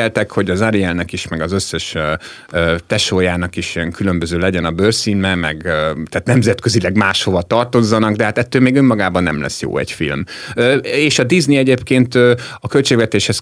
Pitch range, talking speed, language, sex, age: 90-120 Hz, 150 wpm, Hungarian, male, 30-49